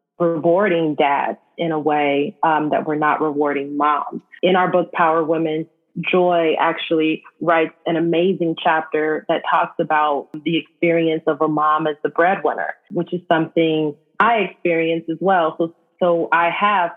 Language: English